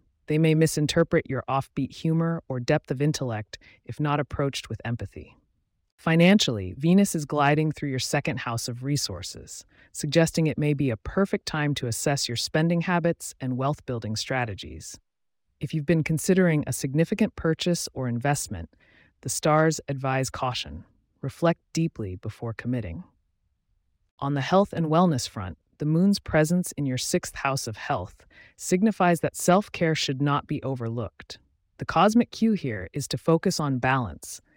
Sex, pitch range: female, 120-160 Hz